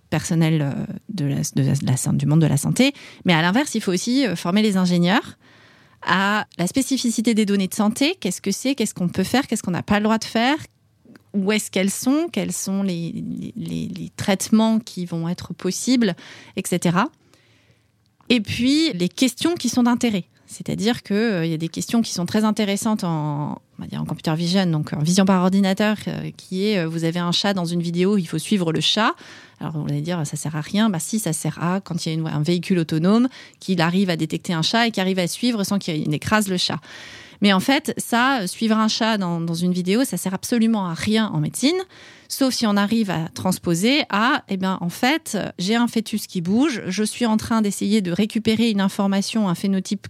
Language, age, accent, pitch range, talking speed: French, 30-49, French, 175-225 Hz, 230 wpm